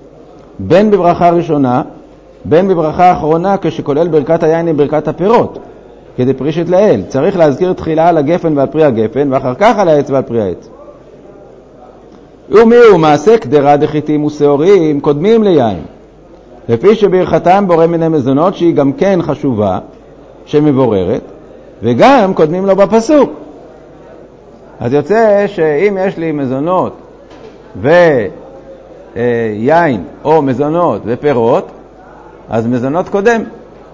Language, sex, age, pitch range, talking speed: Hebrew, male, 50-69, 140-180 Hz, 115 wpm